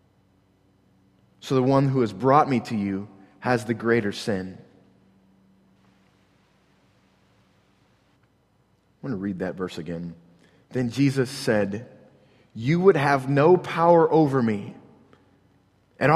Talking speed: 115 wpm